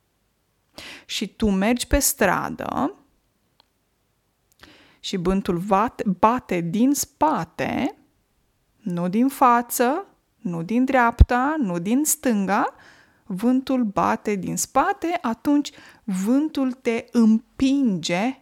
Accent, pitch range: native, 195-255 Hz